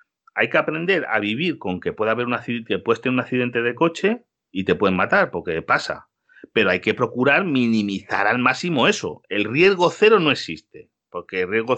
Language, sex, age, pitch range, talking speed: Spanish, male, 40-59, 105-145 Hz, 200 wpm